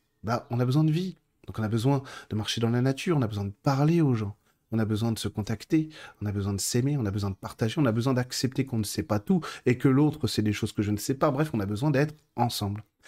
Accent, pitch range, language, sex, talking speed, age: French, 105-145 Hz, French, male, 295 wpm, 30-49